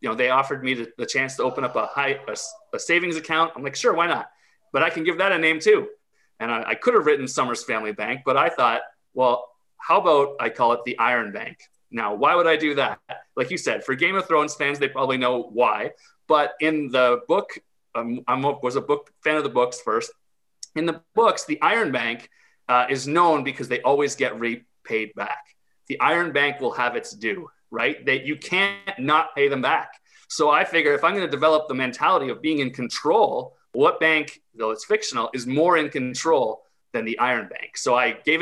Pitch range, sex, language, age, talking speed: 125-175 Hz, male, English, 30-49, 225 wpm